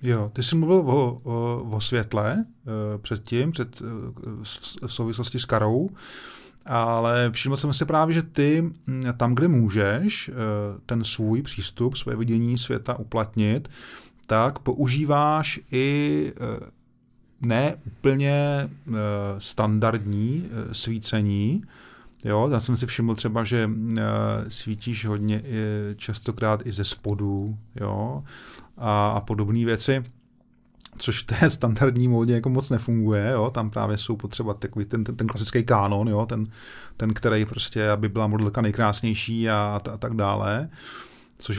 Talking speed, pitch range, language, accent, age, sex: 130 wpm, 110-125 Hz, Czech, native, 30-49, male